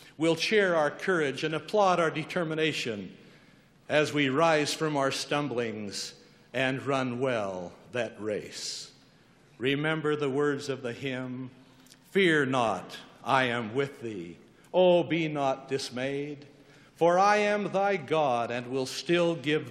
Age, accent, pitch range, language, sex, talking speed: 60-79, American, 130-165 Hz, English, male, 140 wpm